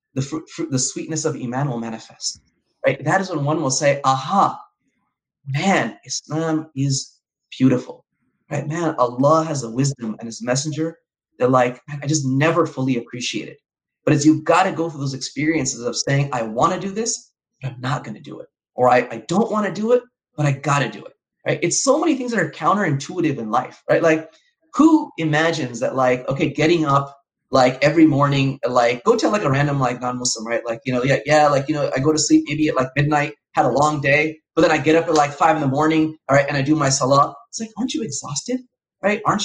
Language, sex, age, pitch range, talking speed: English, male, 30-49, 135-170 Hz, 230 wpm